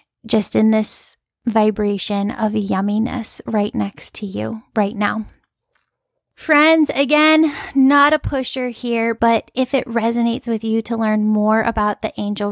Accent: American